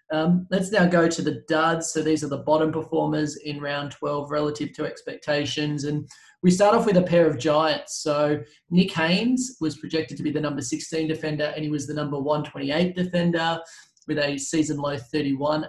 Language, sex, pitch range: English, male, 150-165 Hz